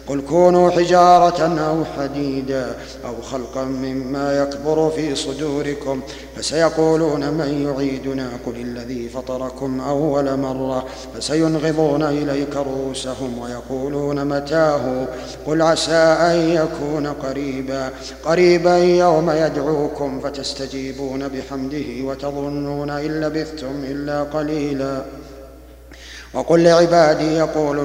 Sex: male